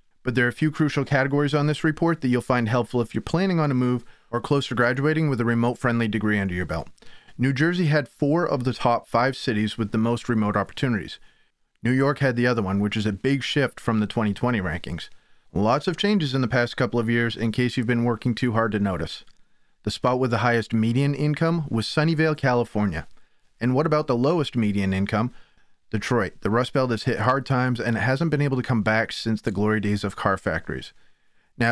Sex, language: male, English